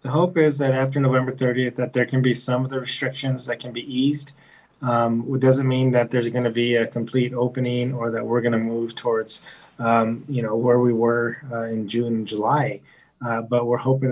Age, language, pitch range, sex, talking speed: 20-39, English, 115-125 Hz, male, 225 wpm